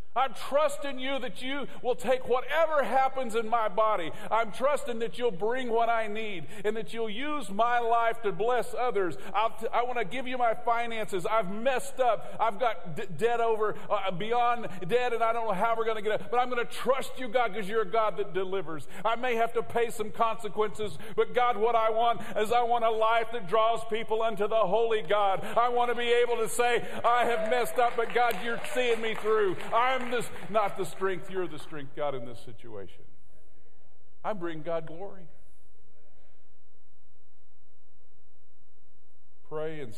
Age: 50-69